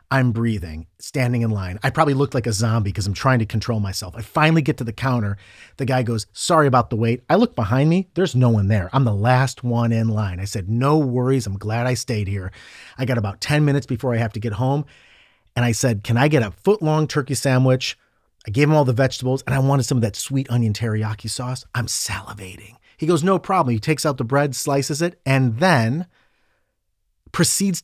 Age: 40-59